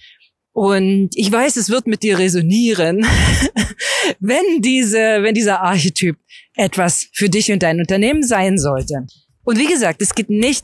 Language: German